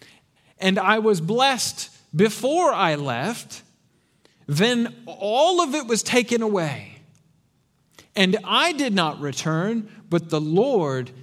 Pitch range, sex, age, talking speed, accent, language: 155-215 Hz, male, 40-59, 120 wpm, American, English